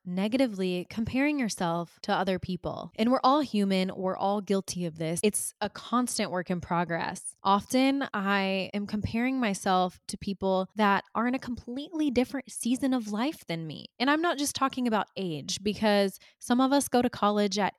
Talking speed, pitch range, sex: 180 wpm, 185-230 Hz, female